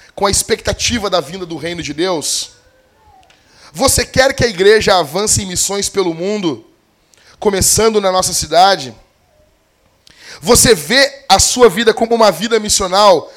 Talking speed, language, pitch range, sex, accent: 145 wpm, Portuguese, 165-220 Hz, male, Brazilian